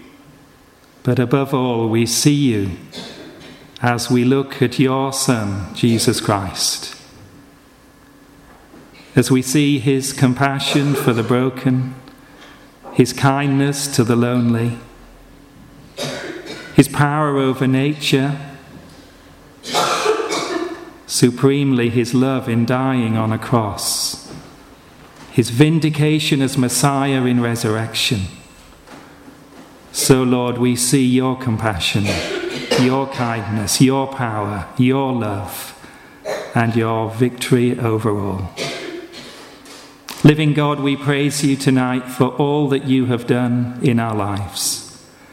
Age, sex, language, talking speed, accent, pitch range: 40-59, male, English, 100 wpm, British, 120-140 Hz